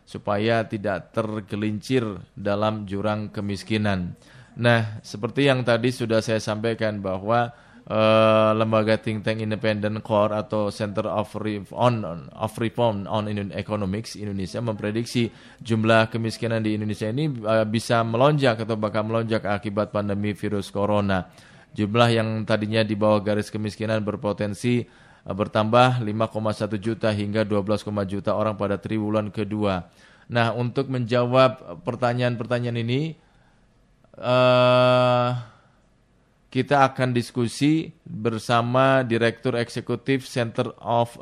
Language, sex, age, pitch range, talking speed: Indonesian, male, 20-39, 105-120 Hz, 110 wpm